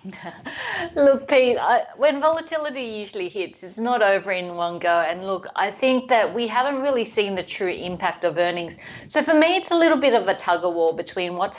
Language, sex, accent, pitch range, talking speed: English, female, Australian, 165-205 Hz, 205 wpm